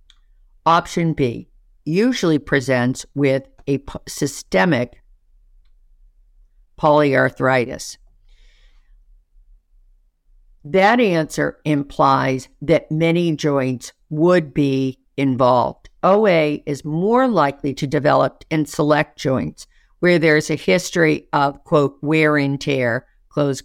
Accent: American